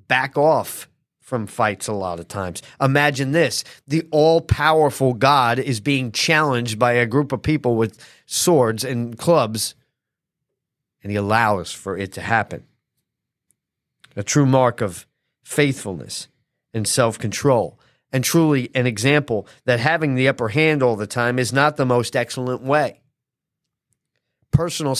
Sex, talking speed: male, 140 wpm